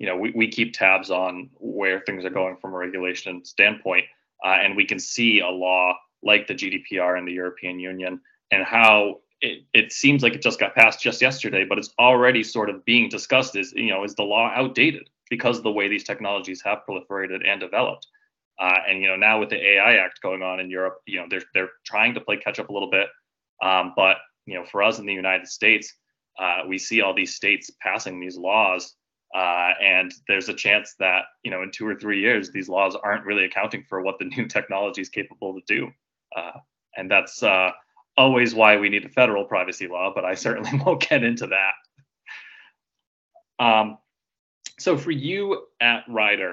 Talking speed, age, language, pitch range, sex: 210 wpm, 20-39, English, 95-120 Hz, male